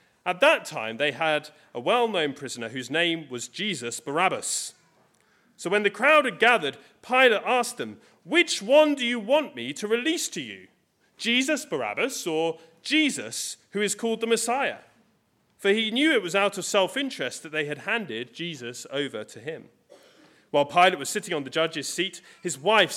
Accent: British